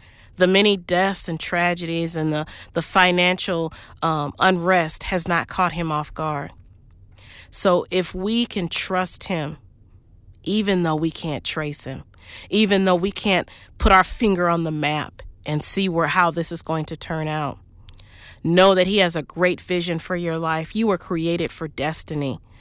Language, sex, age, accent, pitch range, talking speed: English, female, 40-59, American, 145-185 Hz, 170 wpm